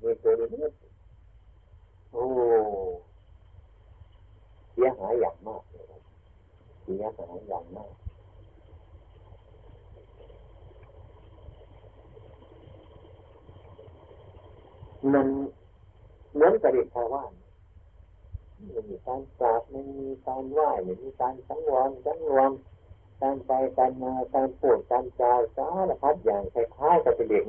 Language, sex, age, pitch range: Thai, male, 60-79, 90-140 Hz